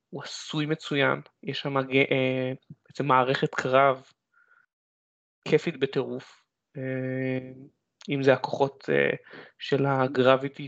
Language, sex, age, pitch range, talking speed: Hebrew, male, 20-39, 130-145 Hz, 85 wpm